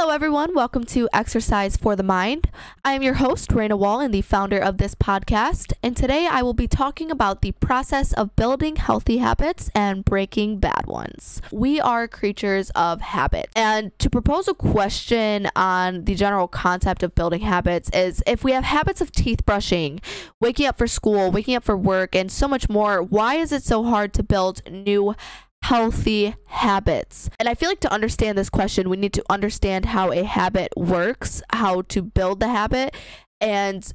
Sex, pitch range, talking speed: female, 190-235 Hz, 190 wpm